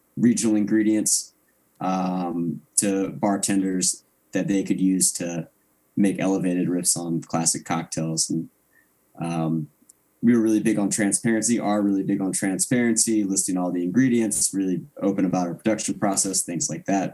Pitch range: 90-110 Hz